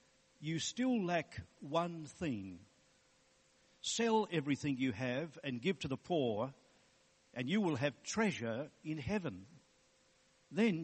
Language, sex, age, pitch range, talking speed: English, male, 60-79, 120-160 Hz, 120 wpm